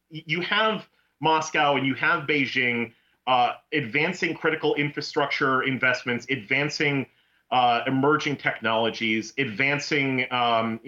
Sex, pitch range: male, 120-150 Hz